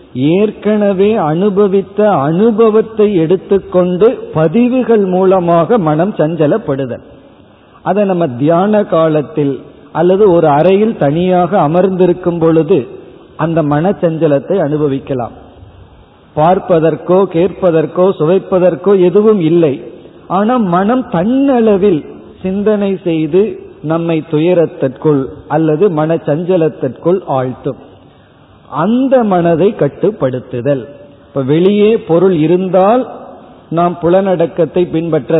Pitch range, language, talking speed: 150-195 Hz, Tamil, 80 wpm